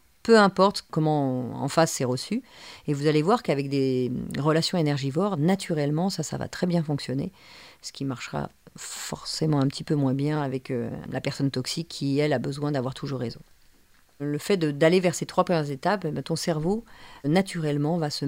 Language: French